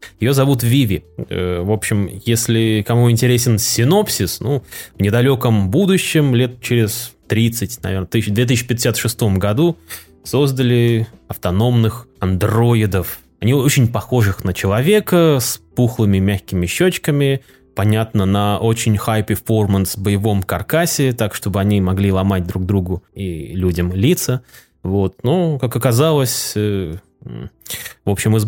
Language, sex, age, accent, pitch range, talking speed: Russian, male, 20-39, native, 100-125 Hz, 115 wpm